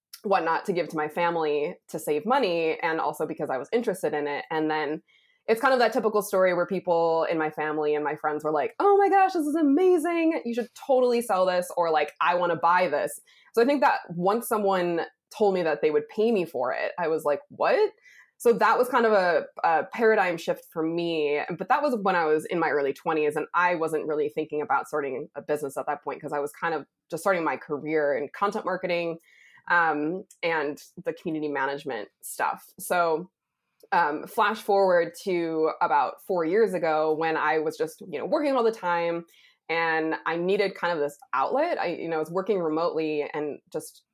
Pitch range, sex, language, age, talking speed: 155-215 Hz, female, English, 20-39, 215 wpm